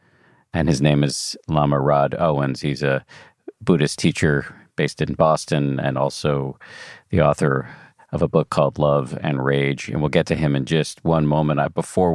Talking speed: 175 wpm